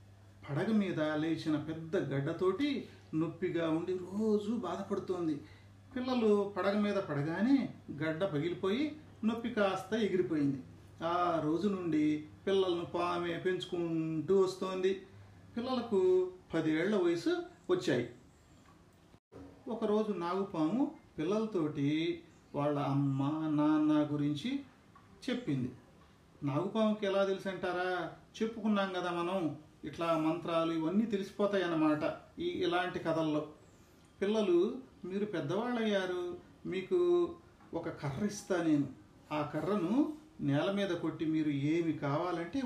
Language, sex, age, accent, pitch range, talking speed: Telugu, male, 40-59, native, 155-200 Hz, 95 wpm